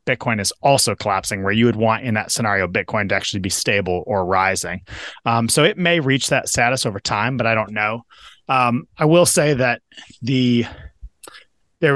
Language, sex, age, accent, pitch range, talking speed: English, male, 30-49, American, 110-140 Hz, 190 wpm